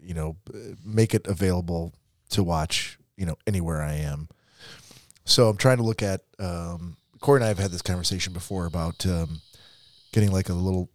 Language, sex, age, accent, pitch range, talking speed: English, male, 30-49, American, 85-105 Hz, 180 wpm